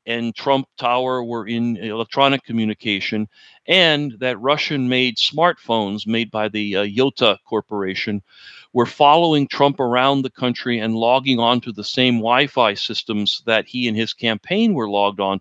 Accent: American